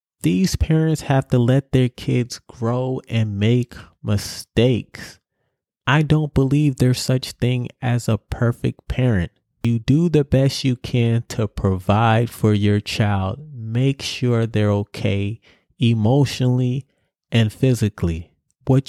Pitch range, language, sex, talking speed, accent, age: 105-130 Hz, English, male, 125 wpm, American, 30-49